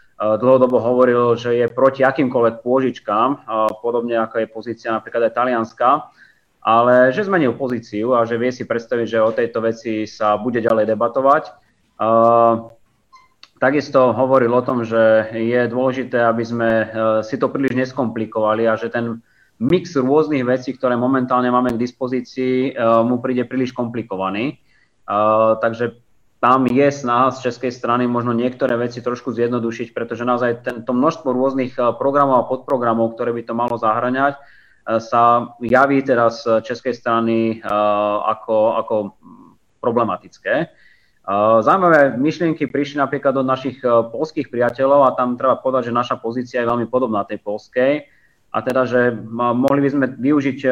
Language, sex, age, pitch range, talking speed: Slovak, male, 20-39, 115-130 Hz, 140 wpm